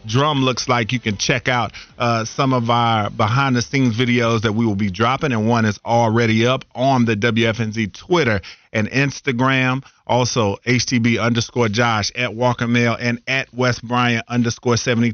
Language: English